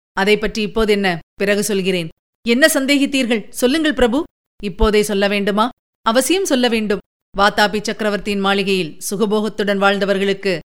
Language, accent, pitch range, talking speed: Tamil, native, 195-245 Hz, 105 wpm